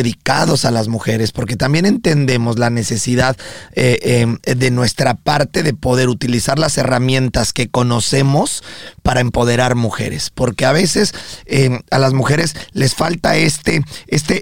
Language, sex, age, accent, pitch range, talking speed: Spanish, male, 40-59, Mexican, 120-150 Hz, 145 wpm